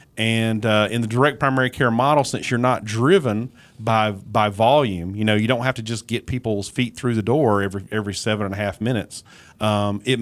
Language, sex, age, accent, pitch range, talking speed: English, male, 40-59, American, 105-130 Hz, 215 wpm